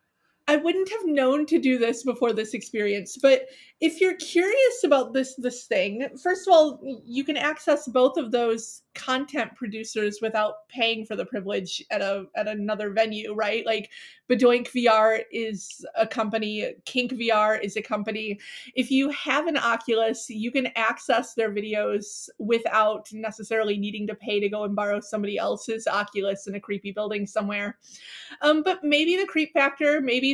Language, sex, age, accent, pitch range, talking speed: English, female, 30-49, American, 215-275 Hz, 170 wpm